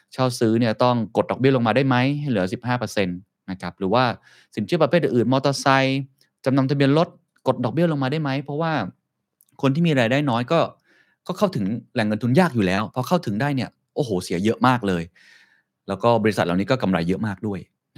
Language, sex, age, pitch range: Thai, male, 20-39, 95-130 Hz